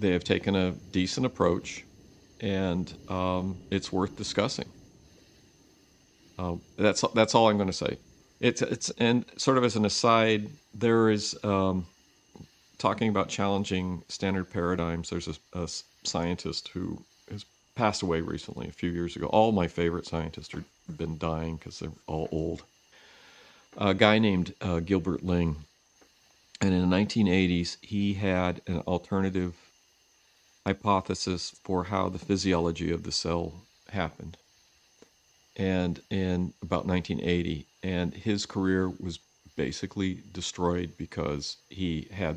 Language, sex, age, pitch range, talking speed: English, male, 50-69, 85-95 Hz, 135 wpm